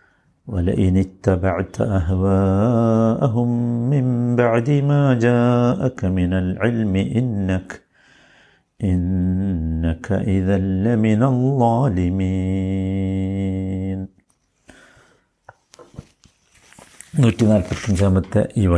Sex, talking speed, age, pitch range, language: male, 40 wpm, 50-69, 95-120 Hz, Malayalam